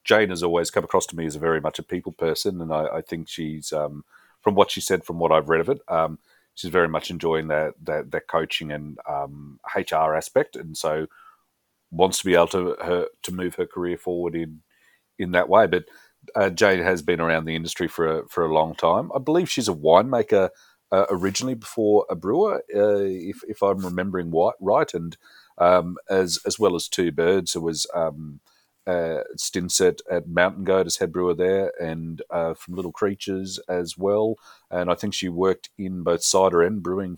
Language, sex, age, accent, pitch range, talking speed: English, male, 40-59, Australian, 80-100 Hz, 205 wpm